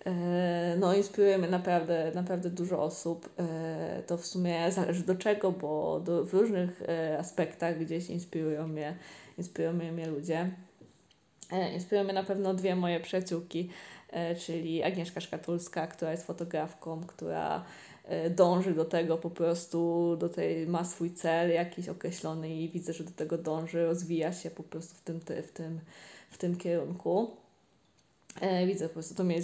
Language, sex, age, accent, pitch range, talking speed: Polish, female, 20-39, native, 165-185 Hz, 145 wpm